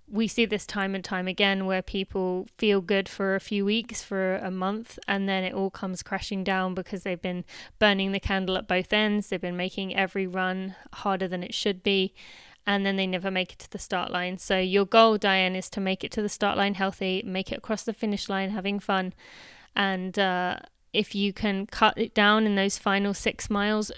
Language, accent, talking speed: English, British, 220 wpm